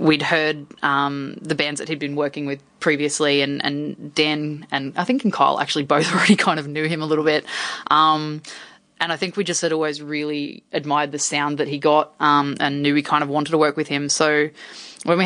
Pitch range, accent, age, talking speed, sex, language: 150-170 Hz, Australian, 20-39, 230 wpm, female, English